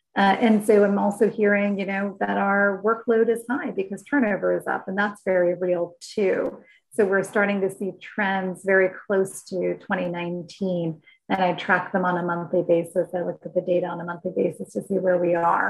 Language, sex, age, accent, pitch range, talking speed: English, female, 30-49, American, 185-215 Hz, 205 wpm